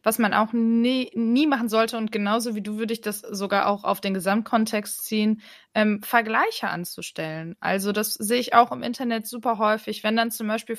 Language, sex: German, female